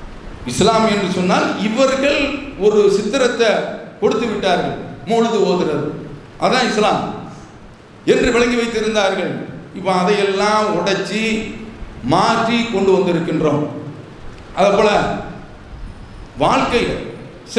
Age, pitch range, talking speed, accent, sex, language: 50-69, 160-220 Hz, 60 wpm, Indian, male, English